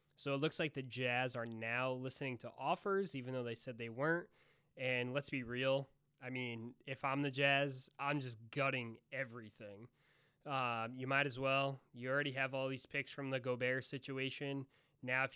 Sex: male